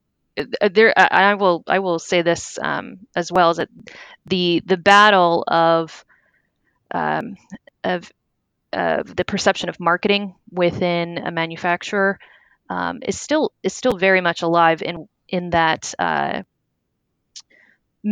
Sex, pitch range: female, 165-185 Hz